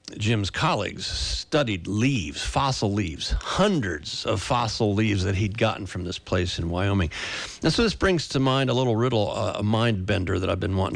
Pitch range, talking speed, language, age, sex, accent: 100-140 Hz, 180 wpm, English, 50-69, male, American